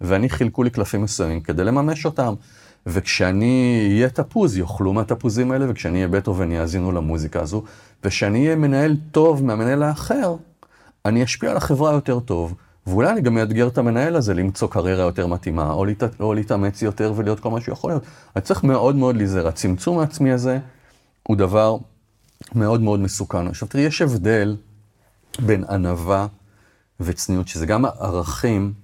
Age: 30-49